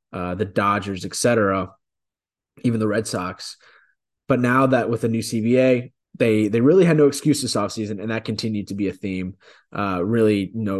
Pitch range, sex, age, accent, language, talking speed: 100-125 Hz, male, 20-39, American, English, 185 wpm